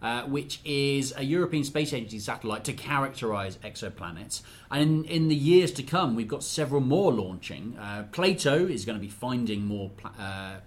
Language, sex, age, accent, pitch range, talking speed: English, male, 30-49, British, 105-140 Hz, 185 wpm